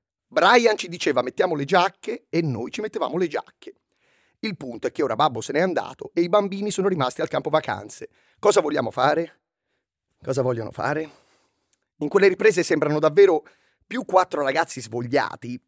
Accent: native